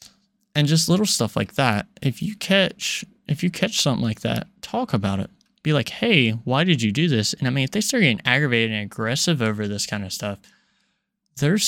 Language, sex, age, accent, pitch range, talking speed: English, male, 20-39, American, 115-185 Hz, 215 wpm